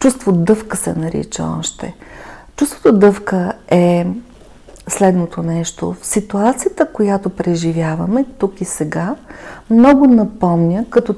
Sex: female